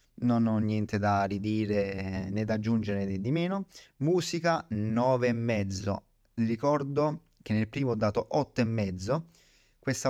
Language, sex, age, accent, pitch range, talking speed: Italian, male, 30-49, native, 105-130 Hz, 125 wpm